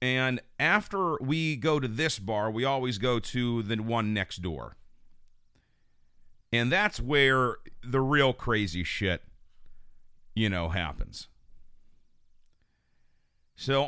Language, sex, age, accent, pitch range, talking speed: English, male, 40-59, American, 85-125 Hz, 110 wpm